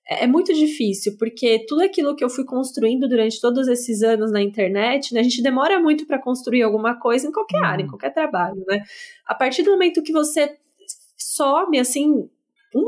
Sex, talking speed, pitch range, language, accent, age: female, 190 wpm, 220-290 Hz, Portuguese, Brazilian, 10-29